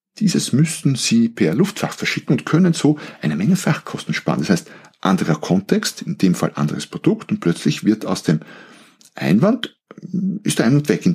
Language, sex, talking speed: German, male, 180 wpm